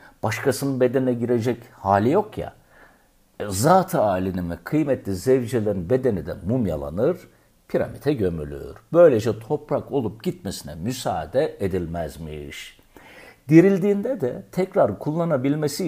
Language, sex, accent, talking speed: Turkish, male, native, 100 wpm